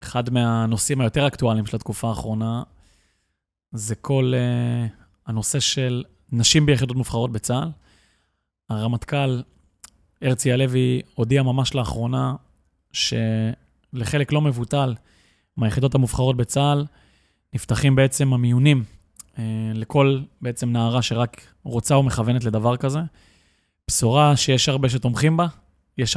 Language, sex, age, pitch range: Hebrew, male, 20-39, 115-140 Hz